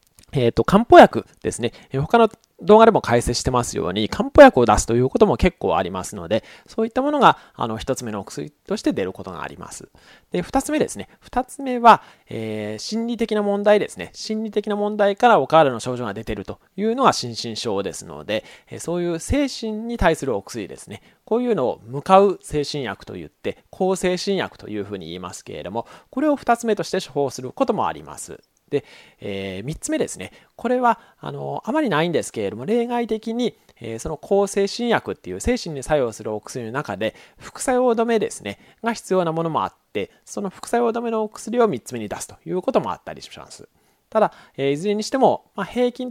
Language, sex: Japanese, male